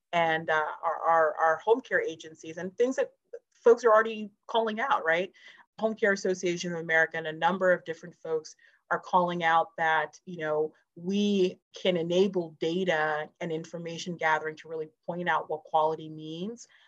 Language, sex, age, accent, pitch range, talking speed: English, female, 30-49, American, 160-195 Hz, 170 wpm